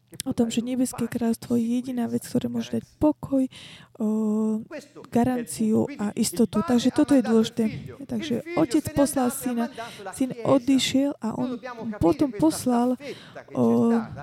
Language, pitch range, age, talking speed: Slovak, 220-260 Hz, 20-39, 130 wpm